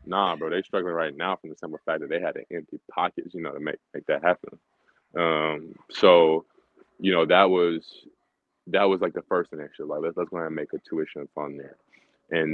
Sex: male